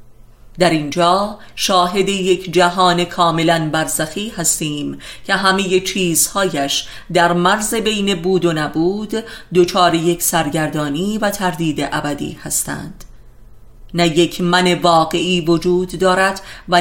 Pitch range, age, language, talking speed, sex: 150-190 Hz, 30-49, Persian, 110 wpm, female